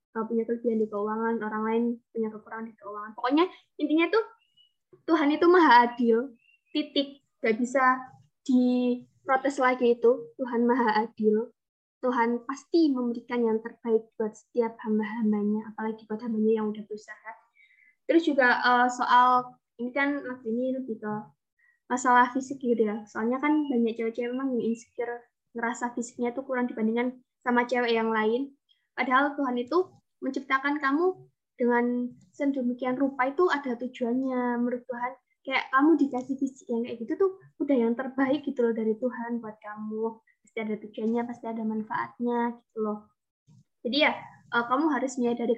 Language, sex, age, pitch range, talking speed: Indonesian, female, 20-39, 230-265 Hz, 145 wpm